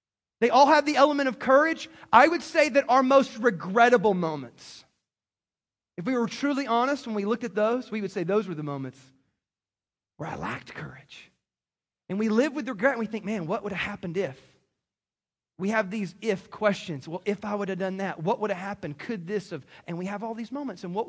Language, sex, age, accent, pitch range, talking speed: English, male, 30-49, American, 185-260 Hz, 220 wpm